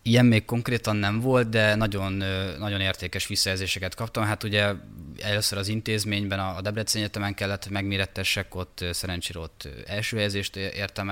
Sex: male